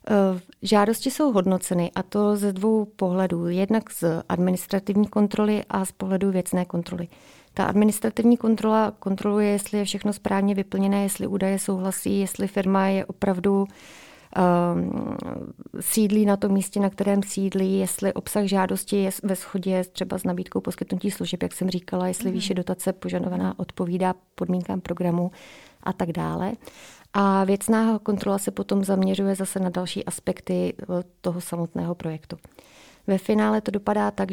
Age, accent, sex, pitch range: 30-49, native, female, 180-200 Hz